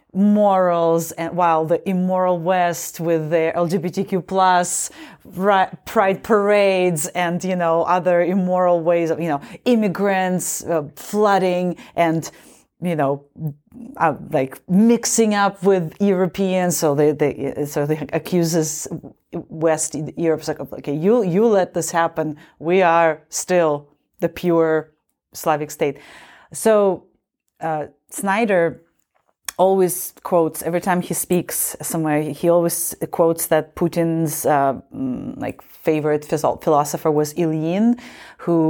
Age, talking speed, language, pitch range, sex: 30-49, 125 wpm, English, 155-190 Hz, female